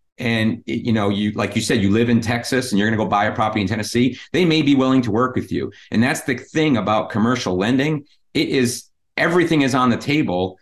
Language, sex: English, male